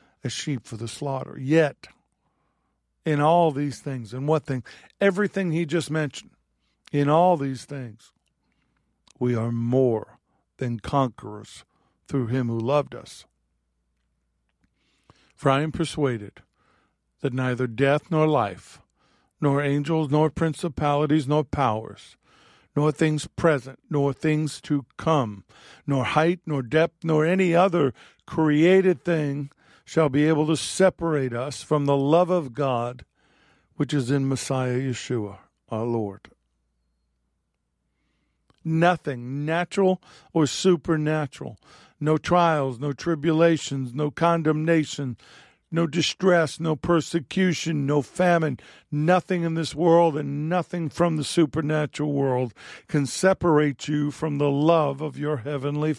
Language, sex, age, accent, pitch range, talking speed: English, male, 50-69, American, 125-160 Hz, 125 wpm